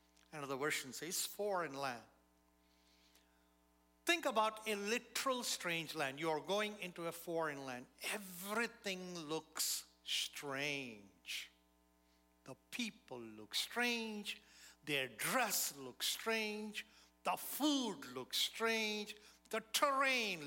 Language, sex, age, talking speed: English, male, 60-79, 100 wpm